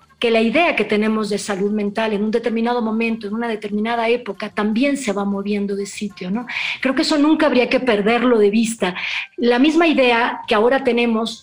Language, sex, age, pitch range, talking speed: Spanish, female, 40-59, 220-275 Hz, 200 wpm